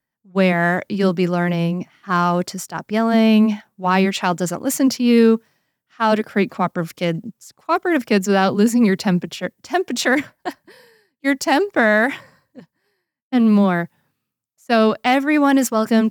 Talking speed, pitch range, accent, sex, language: 130 wpm, 180-230 Hz, American, female, English